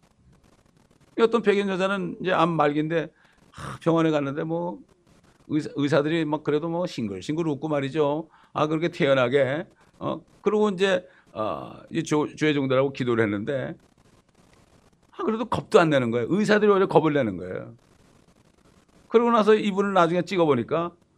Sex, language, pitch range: male, English, 125-170 Hz